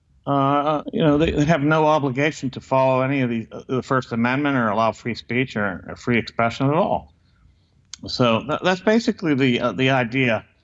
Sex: male